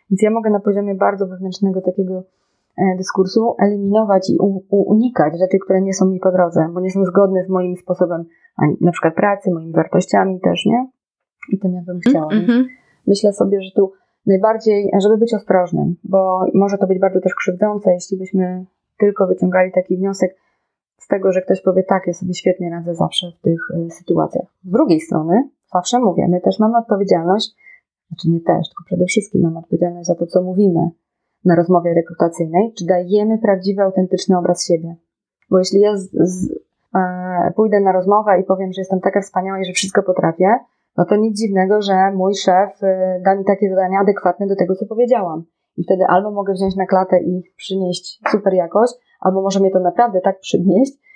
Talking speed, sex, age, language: 190 wpm, female, 30-49, Polish